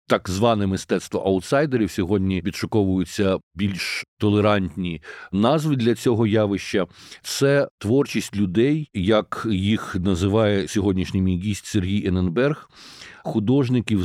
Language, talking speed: Ukrainian, 100 wpm